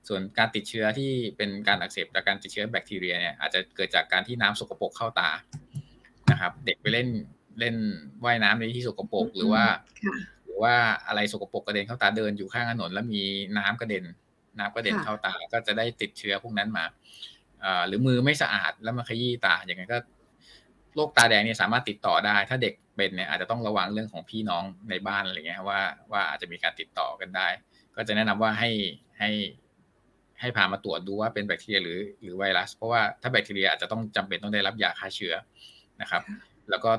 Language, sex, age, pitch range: Thai, male, 20-39, 100-120 Hz